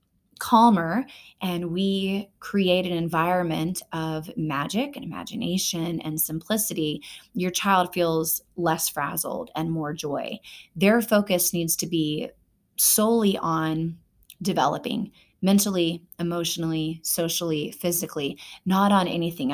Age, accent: 20-39, American